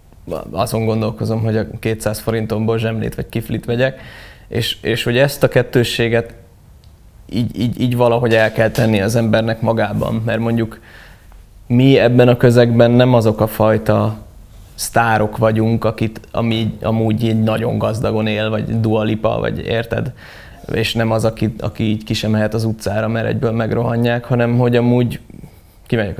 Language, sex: English, male